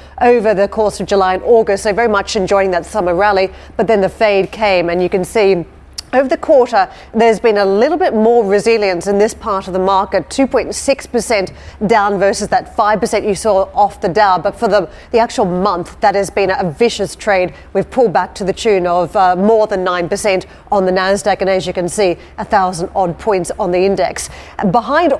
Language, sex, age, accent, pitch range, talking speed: English, female, 40-59, Australian, 195-220 Hz, 210 wpm